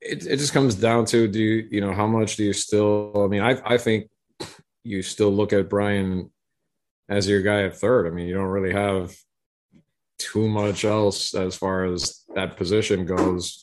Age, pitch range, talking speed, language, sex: 30-49, 95-105 Hz, 200 wpm, English, male